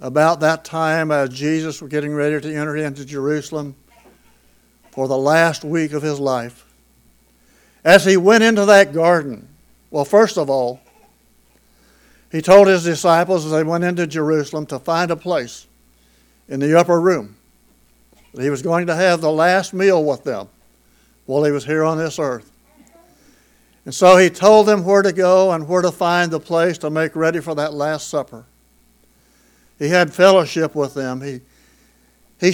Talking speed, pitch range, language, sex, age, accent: 170 wpm, 125-175 Hz, English, male, 60-79, American